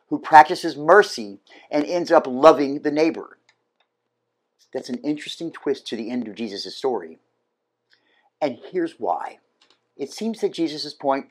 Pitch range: 135-205 Hz